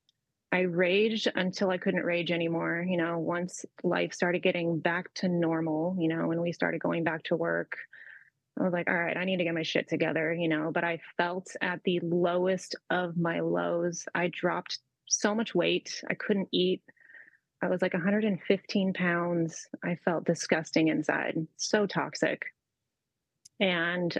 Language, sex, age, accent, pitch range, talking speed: English, female, 20-39, American, 165-195 Hz, 170 wpm